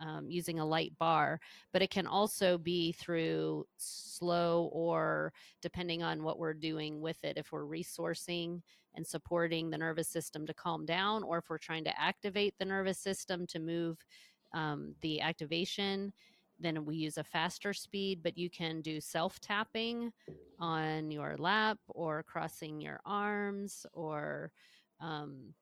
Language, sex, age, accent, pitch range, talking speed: English, female, 30-49, American, 160-190 Hz, 150 wpm